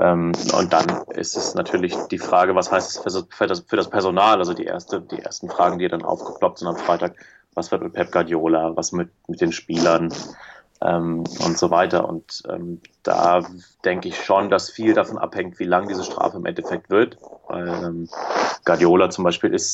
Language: German